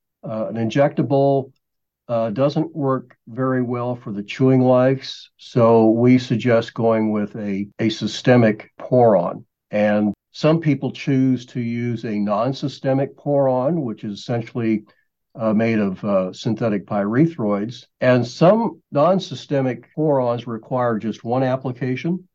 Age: 60-79